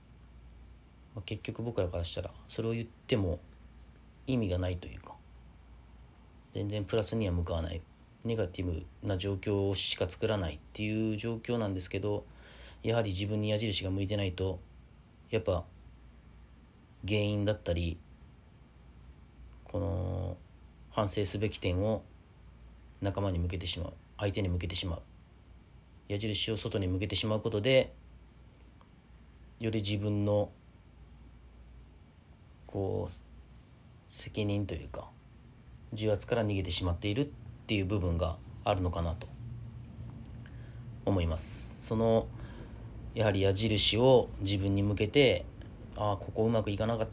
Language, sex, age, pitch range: Japanese, male, 40-59, 85-110 Hz